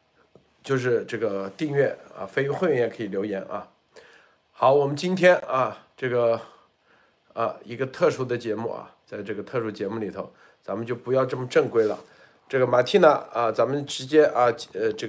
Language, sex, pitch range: Chinese, male, 135-205 Hz